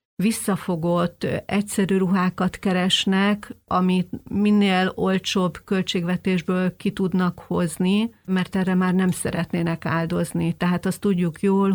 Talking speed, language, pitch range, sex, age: 105 wpm, Hungarian, 175-195 Hz, female, 40-59